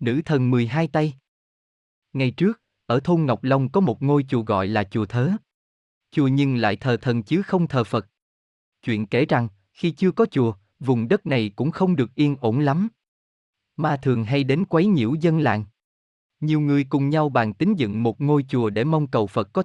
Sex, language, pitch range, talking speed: male, Vietnamese, 115-160 Hz, 200 wpm